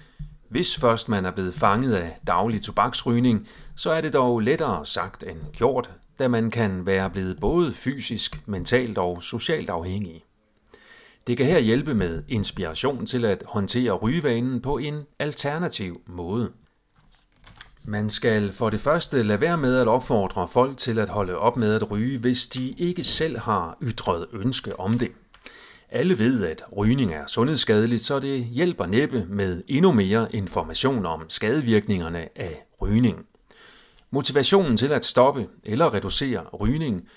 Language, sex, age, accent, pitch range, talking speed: Danish, male, 40-59, native, 100-130 Hz, 150 wpm